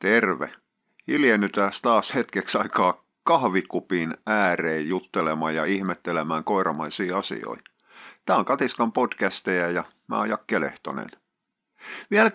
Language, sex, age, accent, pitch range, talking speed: Finnish, male, 50-69, native, 90-110 Hz, 95 wpm